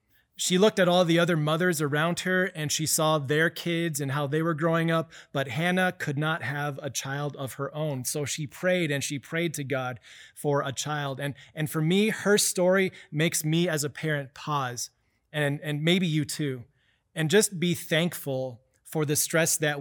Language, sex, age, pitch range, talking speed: English, male, 30-49, 140-170 Hz, 200 wpm